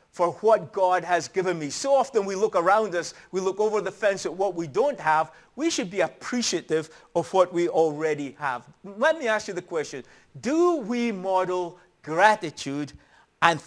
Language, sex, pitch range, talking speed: English, male, 160-225 Hz, 185 wpm